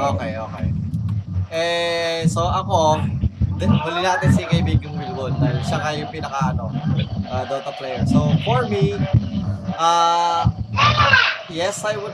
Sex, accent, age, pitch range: male, native, 20-39, 130-170 Hz